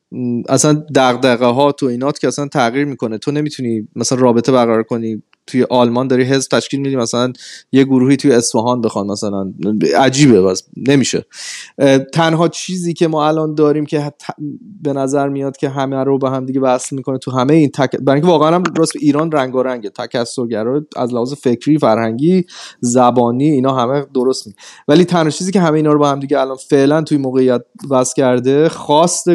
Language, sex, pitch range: Persian, male, 125-160 Hz